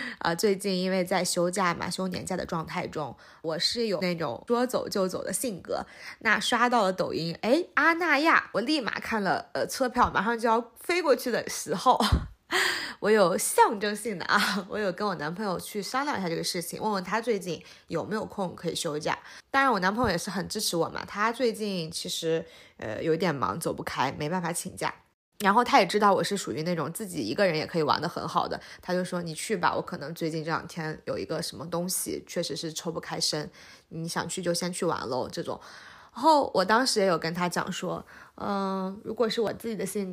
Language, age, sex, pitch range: Chinese, 20-39, female, 175-230 Hz